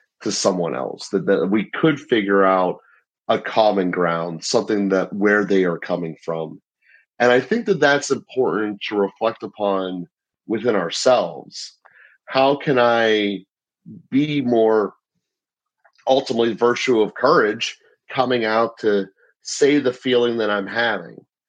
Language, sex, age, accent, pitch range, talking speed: English, male, 30-49, American, 95-125 Hz, 135 wpm